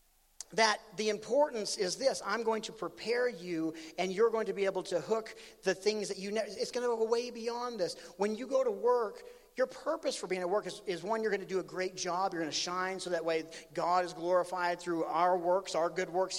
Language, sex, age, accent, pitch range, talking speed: English, male, 40-59, American, 170-230 Hz, 245 wpm